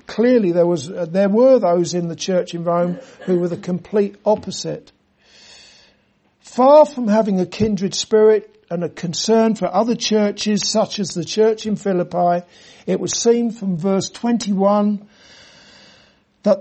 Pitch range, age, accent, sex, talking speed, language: 190-230 Hz, 60-79, British, male, 150 wpm, English